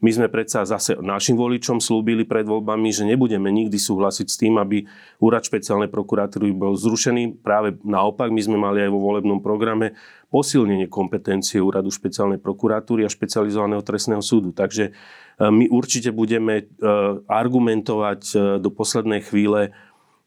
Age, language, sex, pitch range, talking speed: 30-49, Slovak, male, 100-120 Hz, 140 wpm